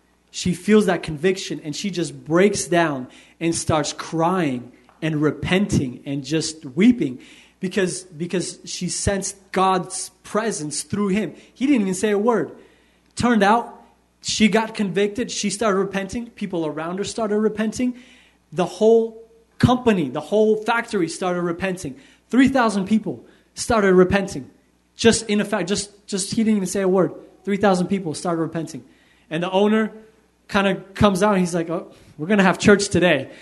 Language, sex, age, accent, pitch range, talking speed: English, male, 20-39, American, 165-215 Hz, 155 wpm